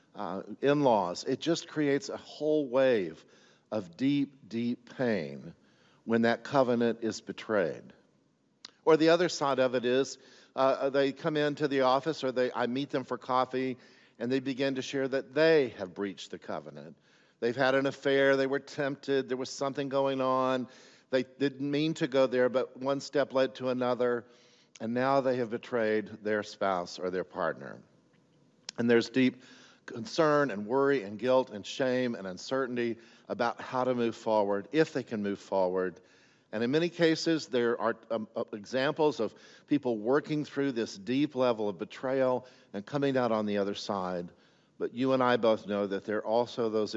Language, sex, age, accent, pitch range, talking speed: English, male, 50-69, American, 110-135 Hz, 180 wpm